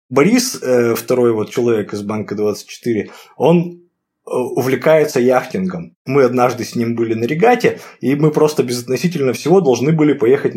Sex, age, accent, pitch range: male, 20-39, native, 115-155 Hz